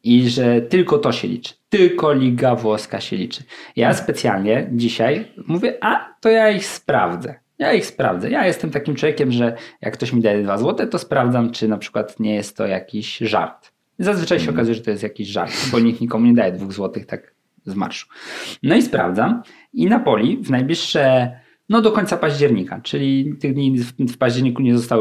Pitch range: 110-150 Hz